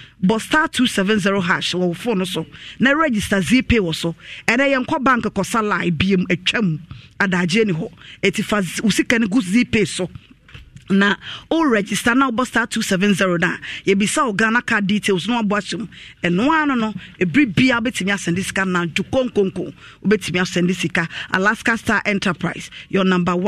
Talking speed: 220 wpm